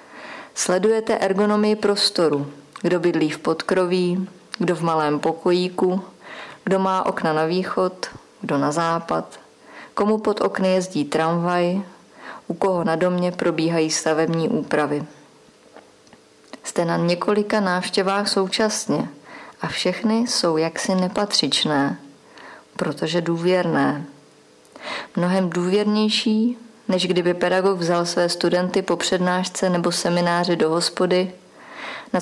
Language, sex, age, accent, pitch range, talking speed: Czech, female, 30-49, native, 170-195 Hz, 110 wpm